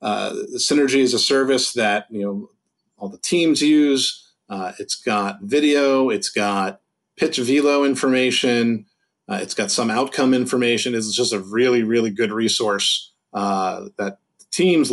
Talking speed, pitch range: 150 wpm, 105-150 Hz